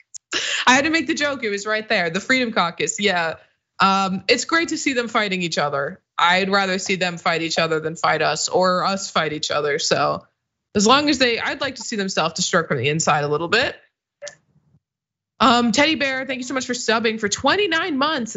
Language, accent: English, American